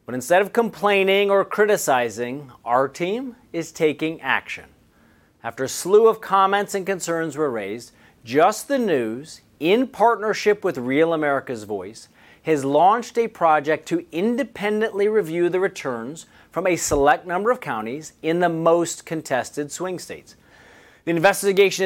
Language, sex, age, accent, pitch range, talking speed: English, male, 40-59, American, 145-195 Hz, 145 wpm